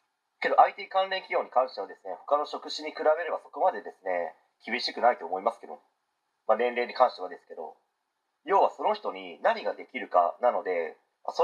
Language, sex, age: Japanese, male, 40-59